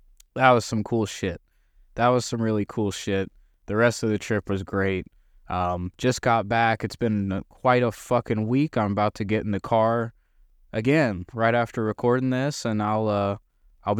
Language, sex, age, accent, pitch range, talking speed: English, male, 20-39, American, 100-120 Hz, 195 wpm